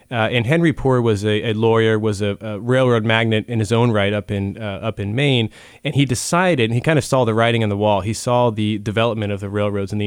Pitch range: 105-120 Hz